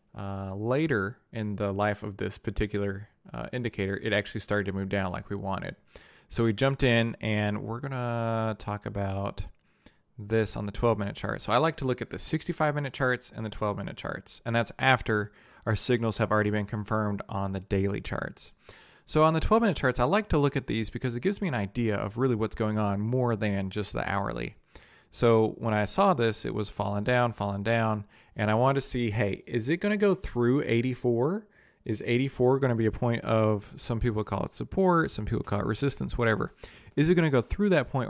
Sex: male